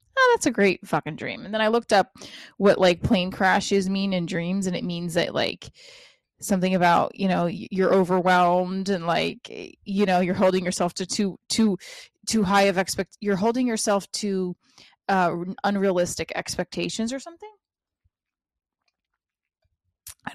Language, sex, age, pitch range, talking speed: English, female, 20-39, 180-225 Hz, 155 wpm